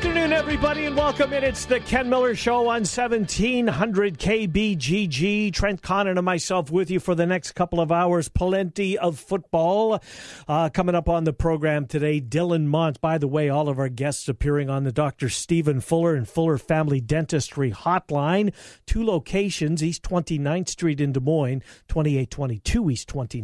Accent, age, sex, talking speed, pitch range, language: American, 50-69, male, 165 wpm, 145-190 Hz, English